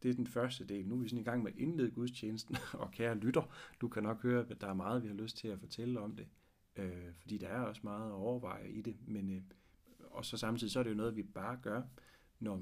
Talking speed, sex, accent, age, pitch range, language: 275 wpm, male, native, 30-49, 95-120 Hz, Danish